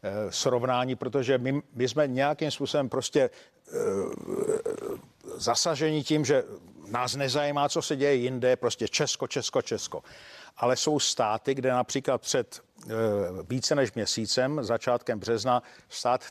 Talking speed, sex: 130 wpm, male